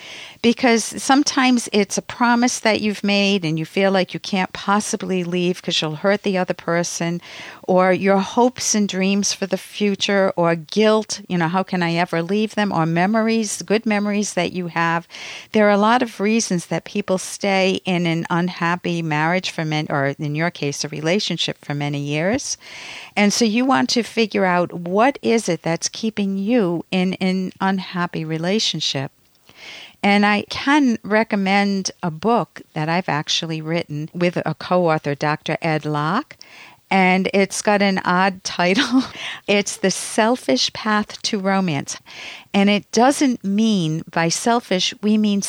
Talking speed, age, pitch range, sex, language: 165 wpm, 50-69, 160-205 Hz, female, English